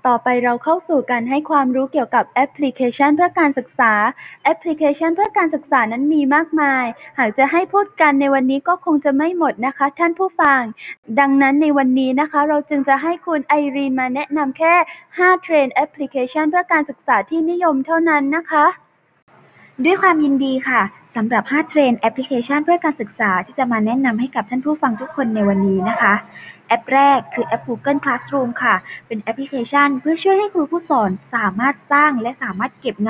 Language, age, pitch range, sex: Thai, 10-29, 235-300 Hz, female